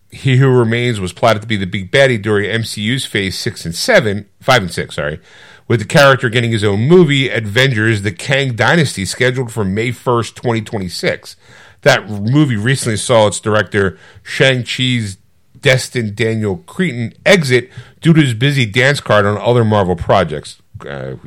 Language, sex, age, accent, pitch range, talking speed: English, male, 50-69, American, 100-130 Hz, 165 wpm